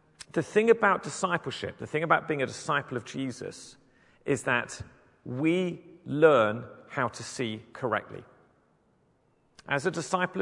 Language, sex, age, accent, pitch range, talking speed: English, male, 40-59, British, 120-155 Hz, 130 wpm